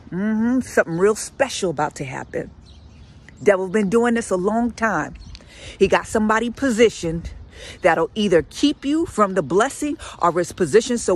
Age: 40-59